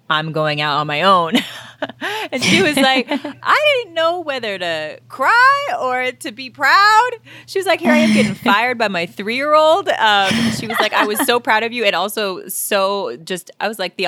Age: 20-39